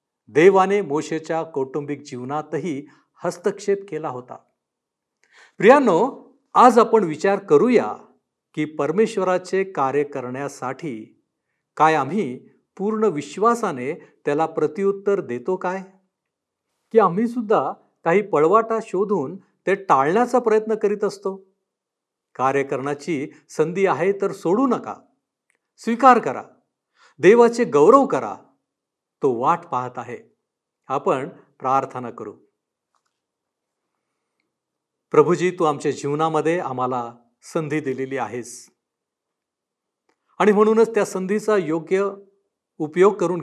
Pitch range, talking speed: 145-205 Hz, 95 wpm